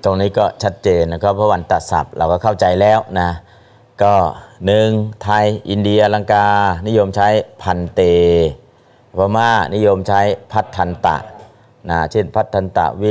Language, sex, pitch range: Thai, male, 85-100 Hz